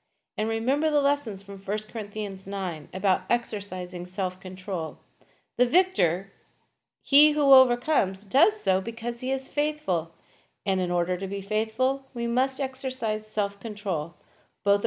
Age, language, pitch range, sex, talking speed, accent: 40-59, English, 180-245 Hz, female, 135 wpm, American